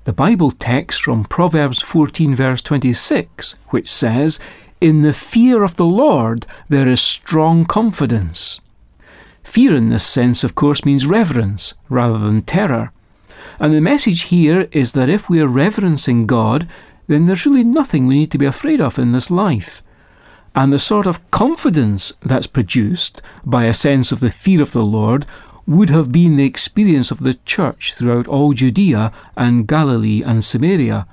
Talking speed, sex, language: 165 wpm, male, English